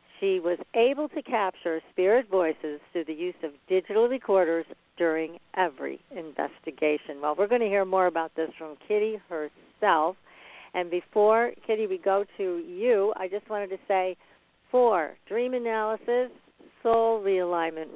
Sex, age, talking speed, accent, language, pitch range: female, 50-69, 145 wpm, American, English, 170-220 Hz